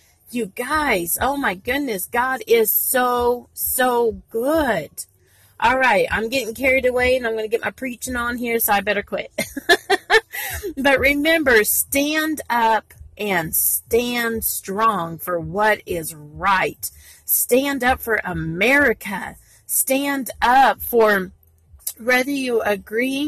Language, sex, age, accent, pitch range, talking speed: English, female, 40-59, American, 215-280 Hz, 130 wpm